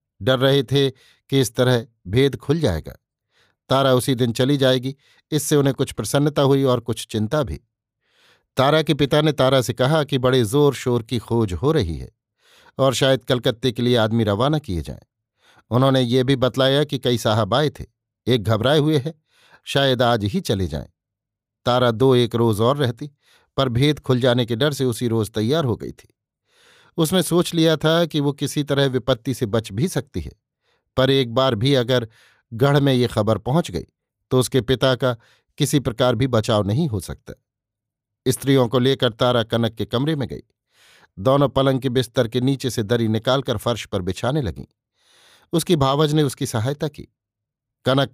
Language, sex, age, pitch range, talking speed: Hindi, male, 50-69, 115-140 Hz, 185 wpm